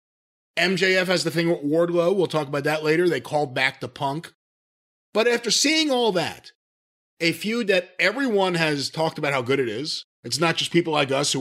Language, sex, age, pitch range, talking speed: English, male, 30-49, 140-195 Hz, 205 wpm